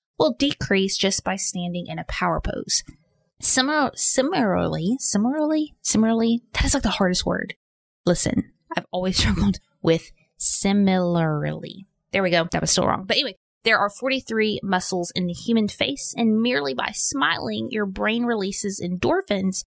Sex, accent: female, American